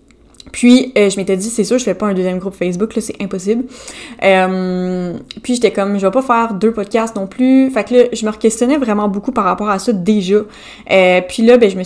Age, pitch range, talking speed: 20-39, 190-230 Hz, 245 wpm